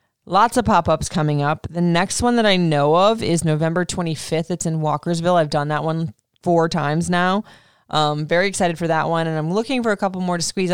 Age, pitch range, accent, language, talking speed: 20-39, 145-175 Hz, American, English, 225 wpm